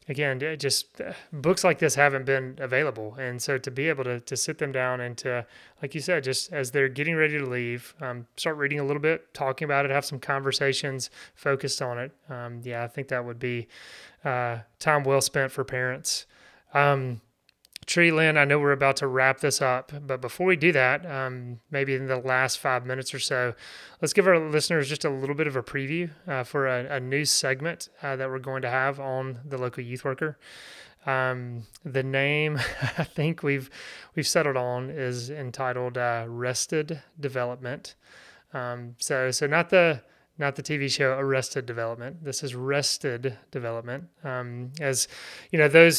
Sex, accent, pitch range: male, American, 130-145 Hz